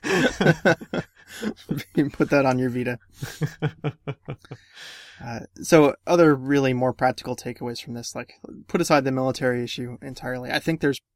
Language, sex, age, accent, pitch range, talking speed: English, male, 20-39, American, 120-135 Hz, 140 wpm